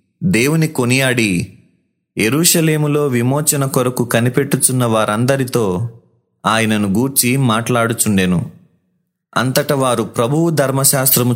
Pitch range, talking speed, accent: 115-145 Hz, 75 wpm, native